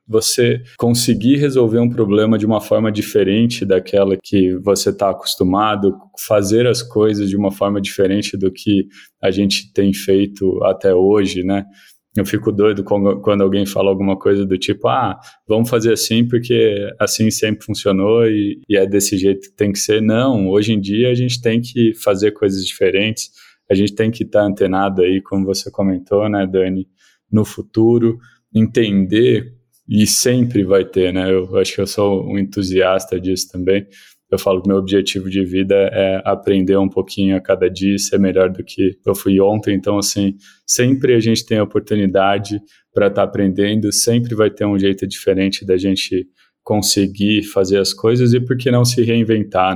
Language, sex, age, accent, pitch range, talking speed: Portuguese, male, 20-39, Brazilian, 95-110 Hz, 175 wpm